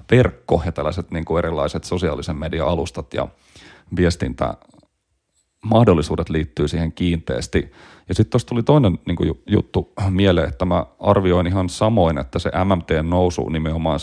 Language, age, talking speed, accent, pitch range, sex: Finnish, 30-49, 120 wpm, native, 80-90 Hz, male